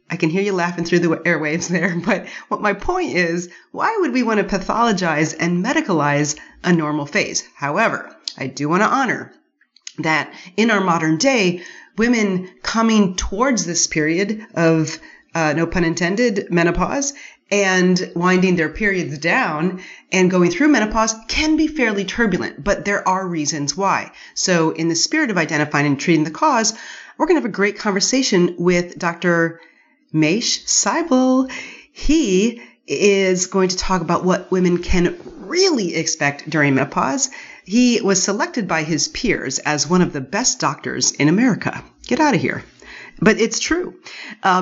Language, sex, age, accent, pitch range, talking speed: English, female, 30-49, American, 165-220 Hz, 165 wpm